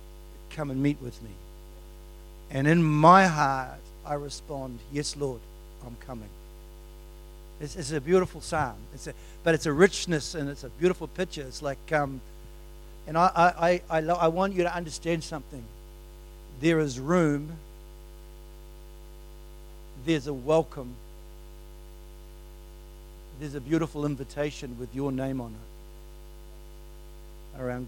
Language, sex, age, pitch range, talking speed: English, male, 60-79, 135-175 Hz, 125 wpm